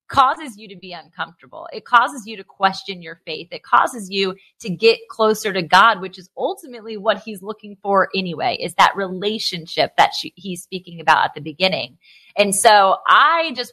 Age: 30-49